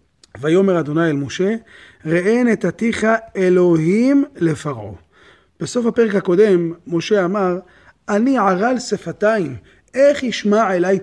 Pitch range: 145-190 Hz